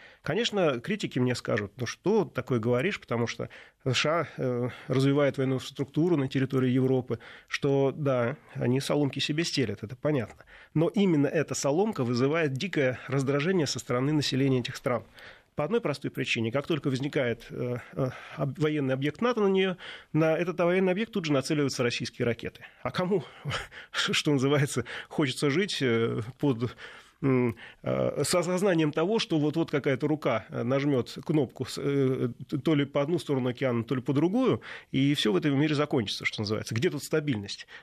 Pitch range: 125-155 Hz